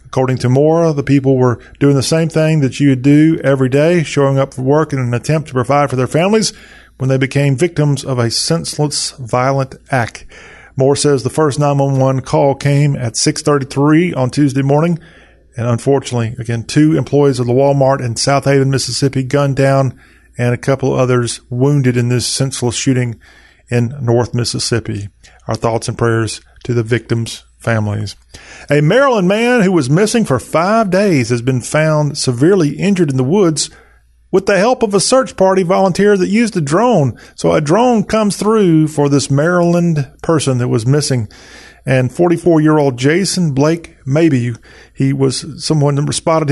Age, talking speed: 40-59, 175 wpm